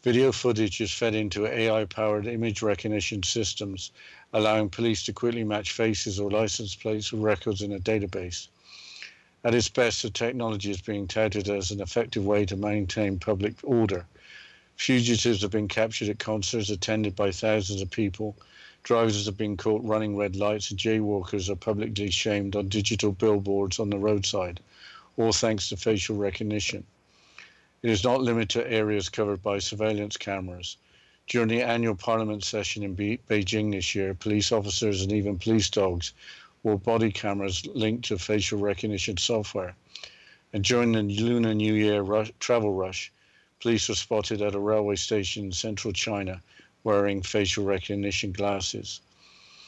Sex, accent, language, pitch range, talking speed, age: male, British, English, 100-110 Hz, 155 wpm, 50-69